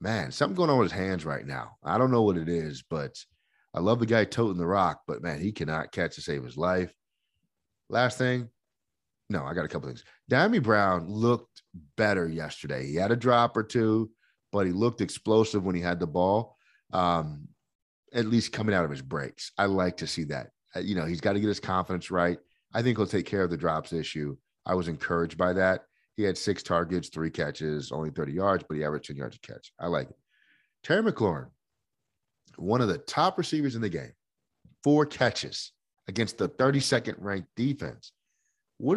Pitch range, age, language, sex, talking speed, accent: 90-135 Hz, 30-49, English, male, 205 wpm, American